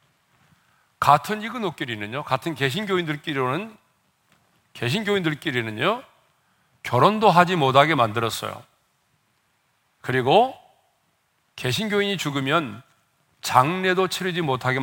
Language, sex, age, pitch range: Korean, male, 40-59, 125-185 Hz